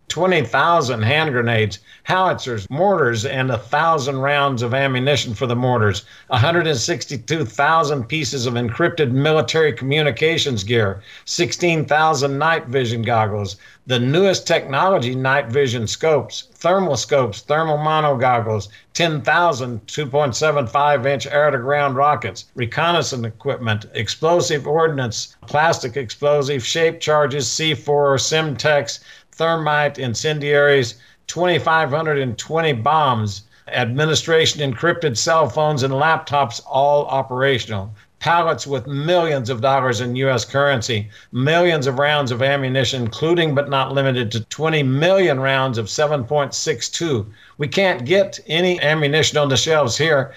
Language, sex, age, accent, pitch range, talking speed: English, male, 60-79, American, 125-155 Hz, 110 wpm